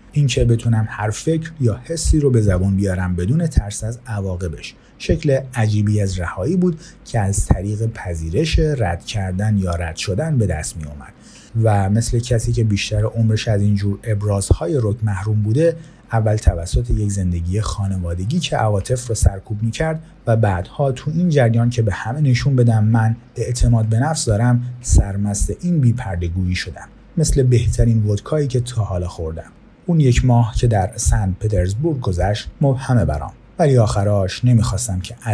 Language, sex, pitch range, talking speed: Persian, male, 95-125 Hz, 170 wpm